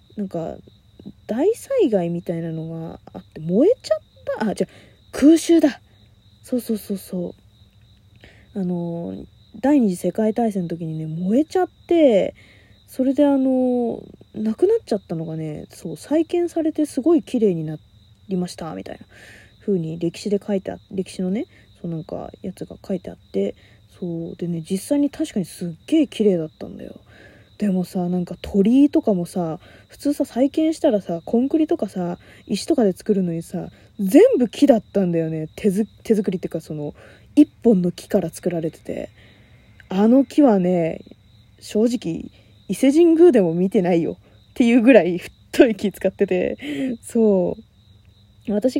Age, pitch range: 20-39, 165-255 Hz